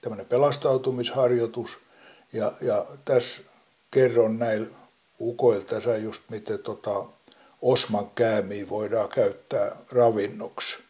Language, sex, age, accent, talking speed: Finnish, male, 60-79, native, 90 wpm